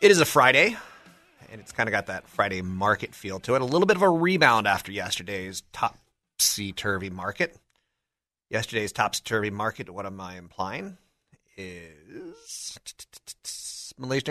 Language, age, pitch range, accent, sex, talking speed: English, 30-49, 85-105 Hz, American, male, 145 wpm